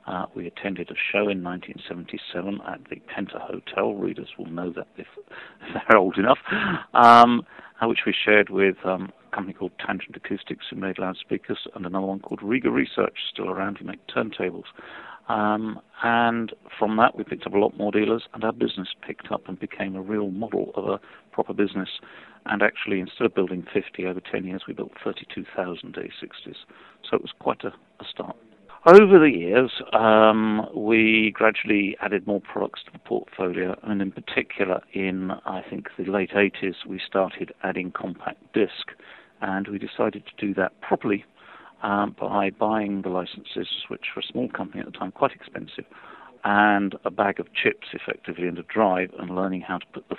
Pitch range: 95-105 Hz